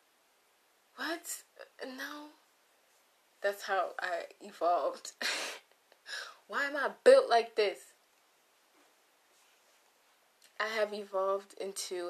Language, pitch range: English, 180-255 Hz